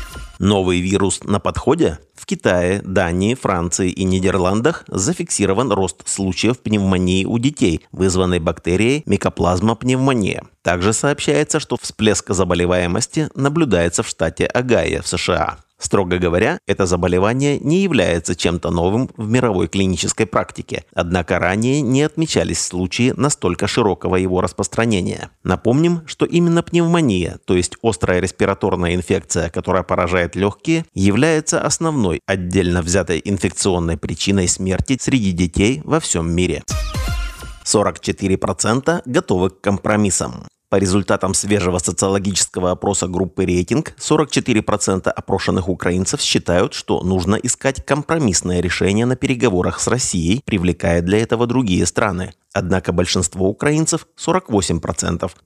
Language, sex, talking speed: Russian, male, 120 wpm